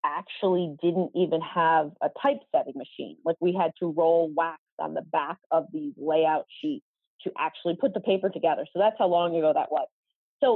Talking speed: 195 wpm